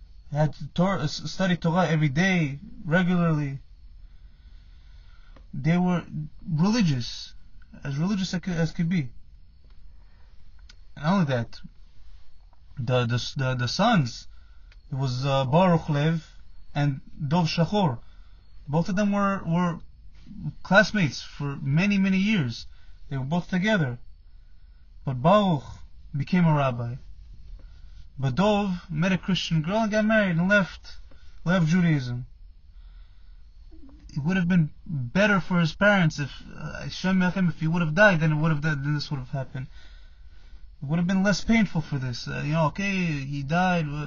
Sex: male